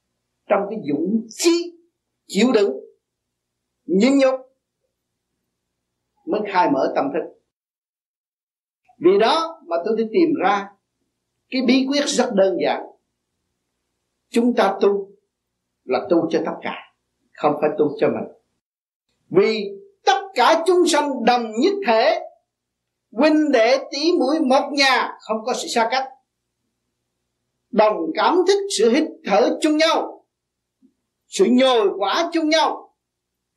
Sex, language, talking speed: male, Vietnamese, 125 wpm